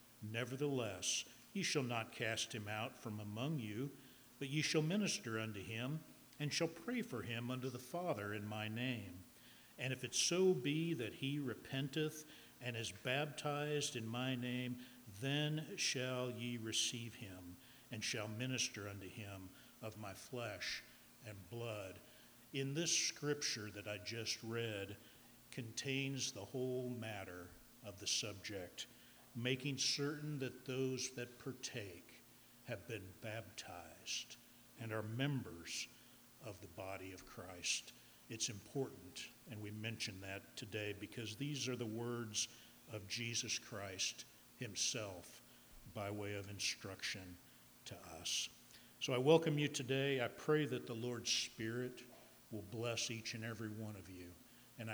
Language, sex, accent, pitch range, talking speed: English, male, American, 110-130 Hz, 140 wpm